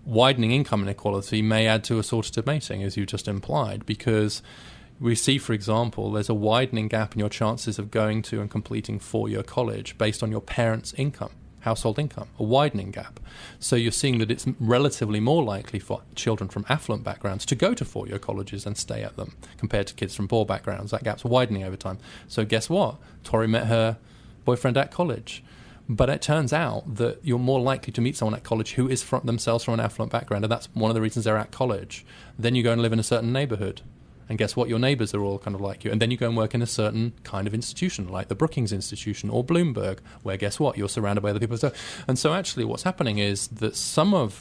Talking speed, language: 230 wpm, English